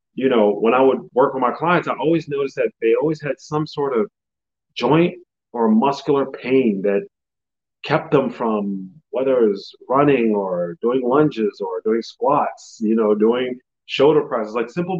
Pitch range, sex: 115-165 Hz, male